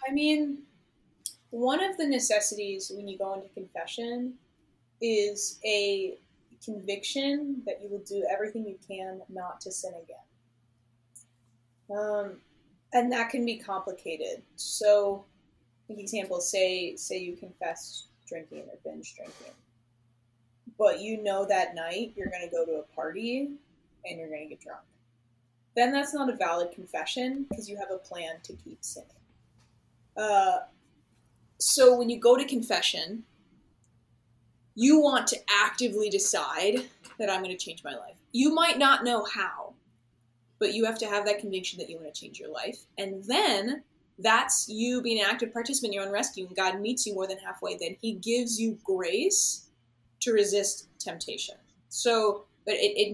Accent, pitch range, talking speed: American, 180-245 Hz, 160 wpm